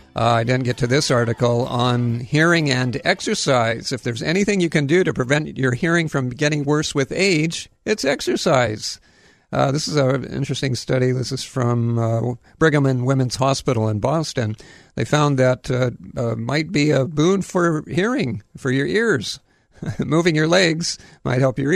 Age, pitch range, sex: 50-69, 120-150 Hz, male